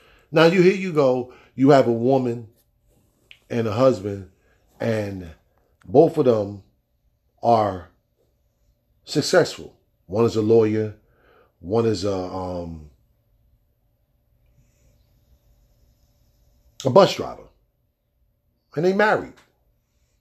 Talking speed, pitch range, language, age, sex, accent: 95 wpm, 105-140 Hz, English, 40-59, male, American